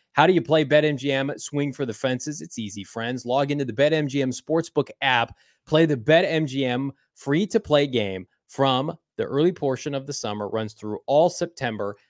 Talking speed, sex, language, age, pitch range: 170 wpm, male, English, 20-39, 125-160 Hz